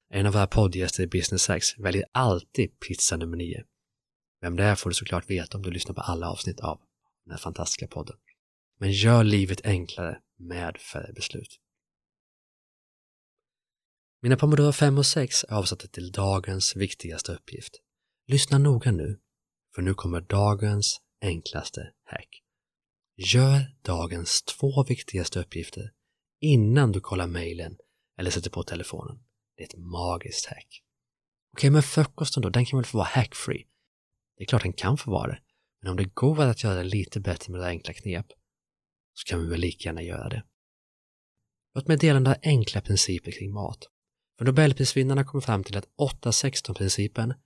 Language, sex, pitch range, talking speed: Swedish, male, 90-125 Hz, 160 wpm